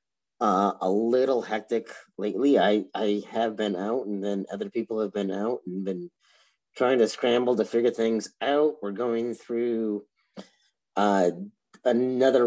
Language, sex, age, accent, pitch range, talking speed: English, male, 30-49, American, 95-125 Hz, 150 wpm